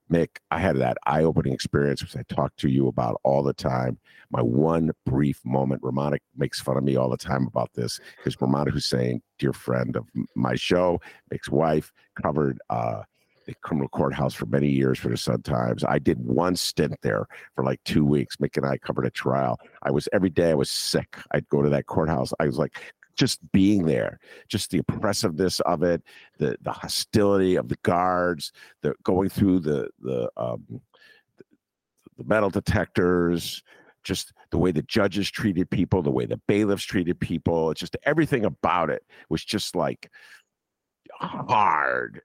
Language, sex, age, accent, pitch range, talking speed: English, male, 50-69, American, 70-110 Hz, 180 wpm